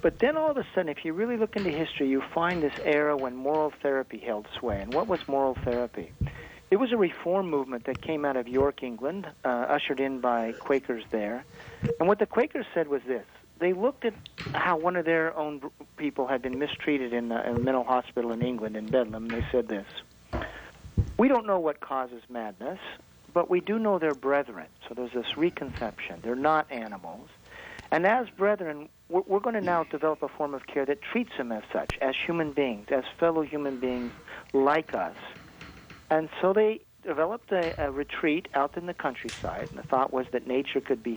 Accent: American